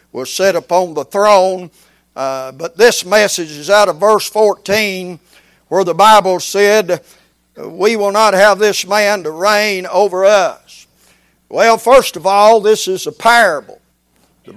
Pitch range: 175-210 Hz